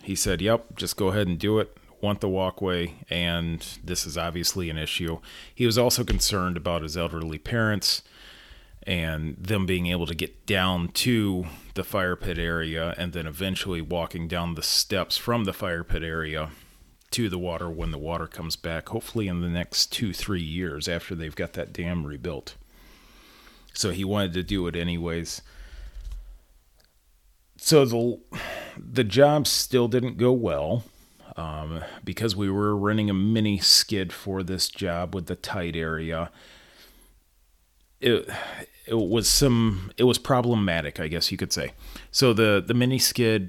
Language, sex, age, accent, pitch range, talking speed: English, male, 30-49, American, 85-105 Hz, 165 wpm